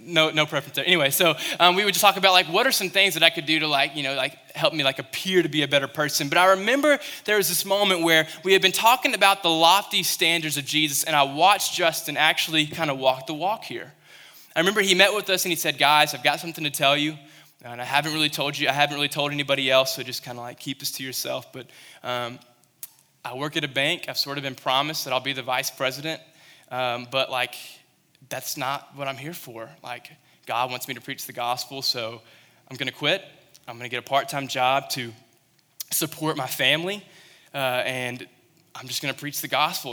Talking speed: 240 wpm